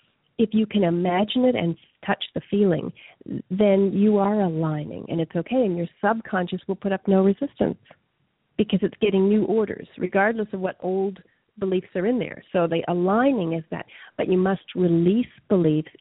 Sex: female